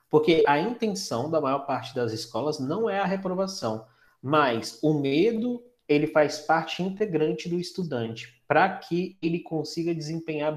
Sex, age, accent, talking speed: male, 20-39, Brazilian, 150 wpm